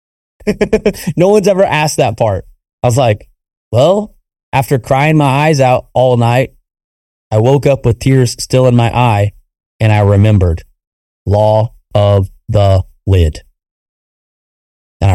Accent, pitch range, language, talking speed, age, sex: American, 100-135 Hz, English, 135 wpm, 30-49, male